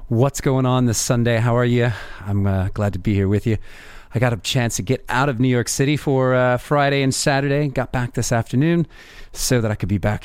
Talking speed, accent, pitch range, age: 245 wpm, American, 95-120 Hz, 30-49